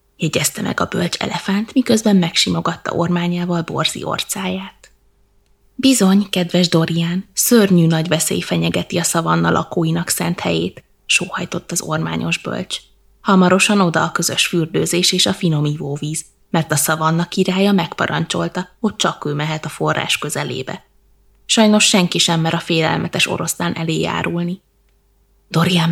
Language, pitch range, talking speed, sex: Hungarian, 160-200 Hz, 130 wpm, female